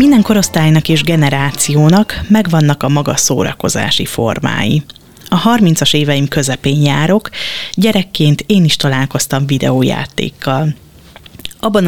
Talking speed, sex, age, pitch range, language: 100 wpm, female, 30-49, 145-185 Hz, Hungarian